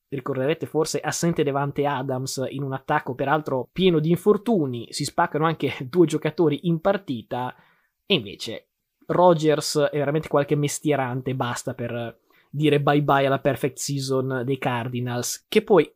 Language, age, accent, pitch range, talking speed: Italian, 20-39, native, 130-155 Hz, 145 wpm